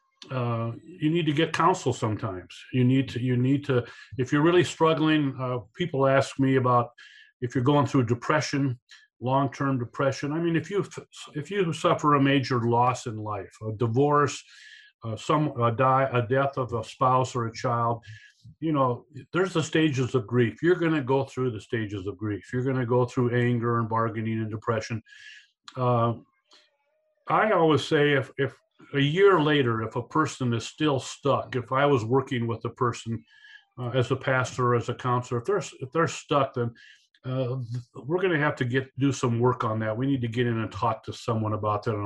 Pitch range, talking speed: 120-145 Hz, 205 wpm